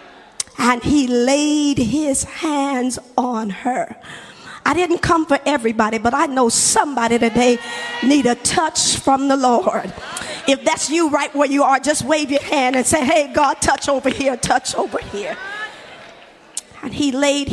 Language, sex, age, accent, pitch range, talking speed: English, female, 50-69, American, 235-305 Hz, 160 wpm